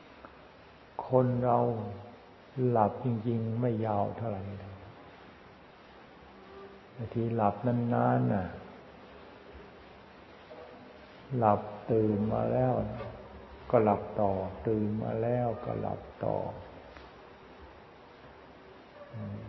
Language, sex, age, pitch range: Thai, male, 60-79, 95-120 Hz